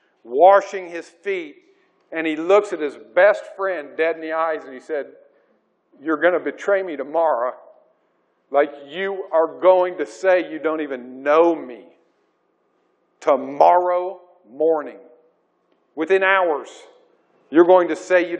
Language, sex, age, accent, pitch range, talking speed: English, male, 50-69, American, 155-215 Hz, 140 wpm